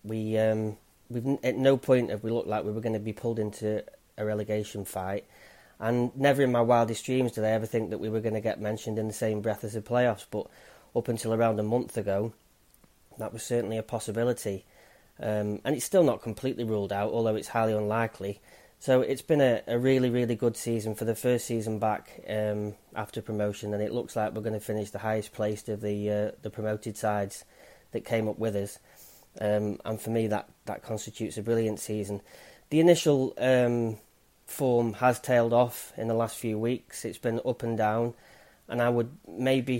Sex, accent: male, British